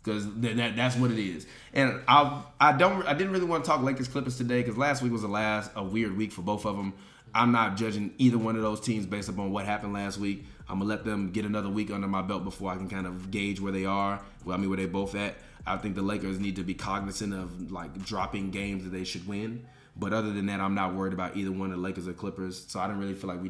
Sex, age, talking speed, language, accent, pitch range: male, 20-39, 285 wpm, English, American, 90-105 Hz